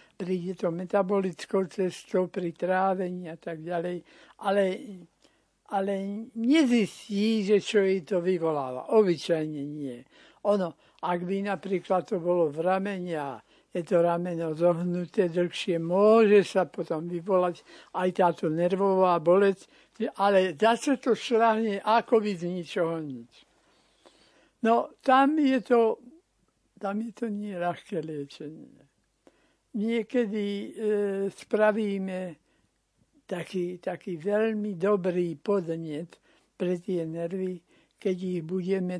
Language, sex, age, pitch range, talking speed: Slovak, male, 60-79, 175-205 Hz, 115 wpm